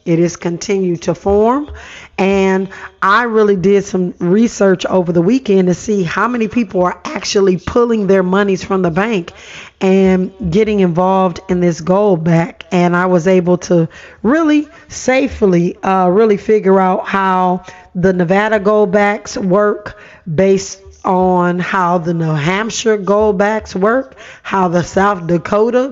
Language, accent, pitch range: English, American, 180-215 Hz